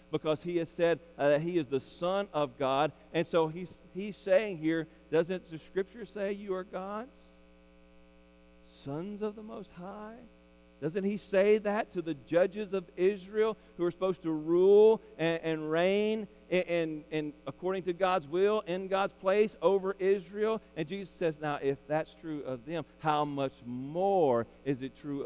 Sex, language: male, English